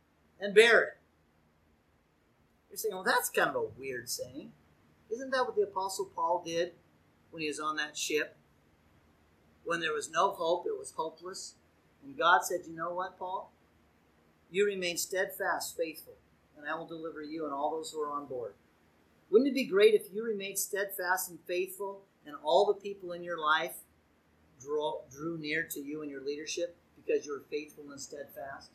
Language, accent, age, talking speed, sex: English, American, 40-59, 180 wpm, male